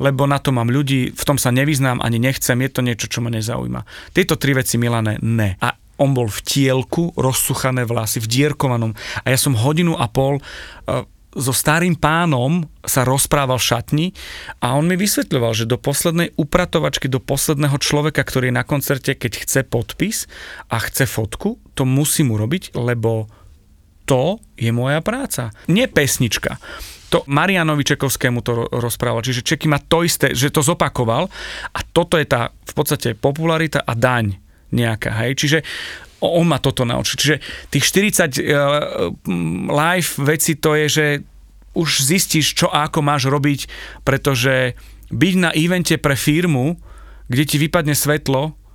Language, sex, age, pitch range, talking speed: Slovak, male, 40-59, 125-160 Hz, 160 wpm